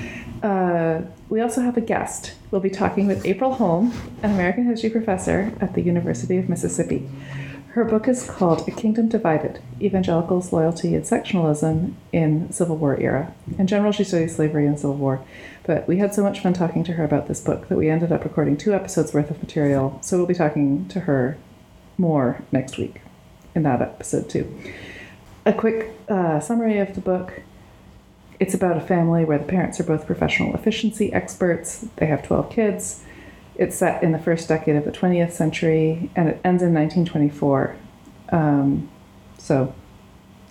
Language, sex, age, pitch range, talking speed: English, female, 30-49, 145-195 Hz, 175 wpm